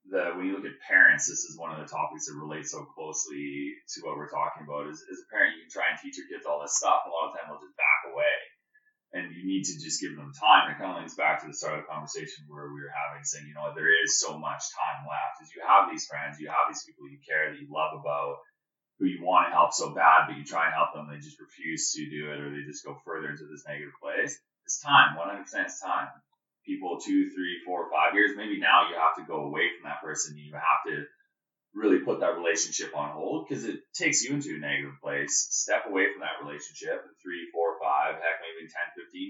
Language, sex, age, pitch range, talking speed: English, male, 30-49, 75-95 Hz, 260 wpm